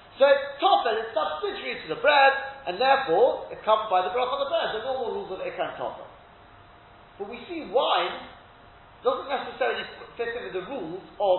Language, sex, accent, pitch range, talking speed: English, male, British, 200-320 Hz, 190 wpm